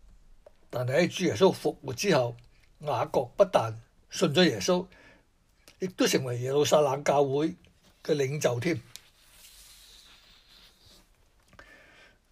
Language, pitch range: Chinese, 125-180 Hz